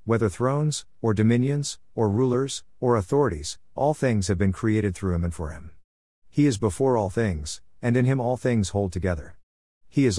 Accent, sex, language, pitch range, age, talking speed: American, male, English, 90-120 Hz, 50-69, 190 wpm